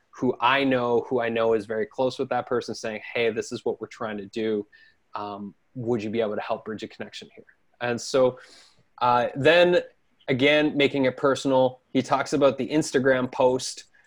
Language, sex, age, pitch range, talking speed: English, male, 20-39, 115-140 Hz, 195 wpm